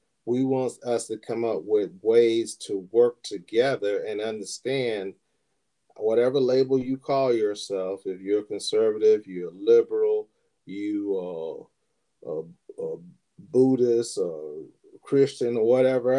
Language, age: English, 40-59